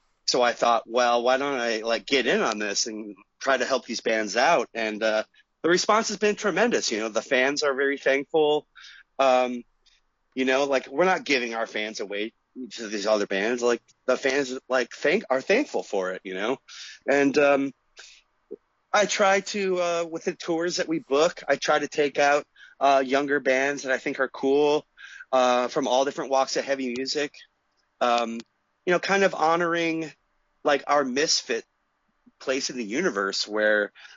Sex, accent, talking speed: male, American, 185 wpm